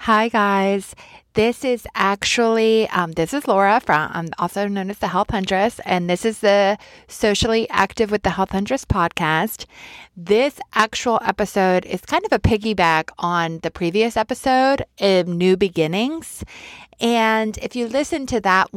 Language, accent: English, American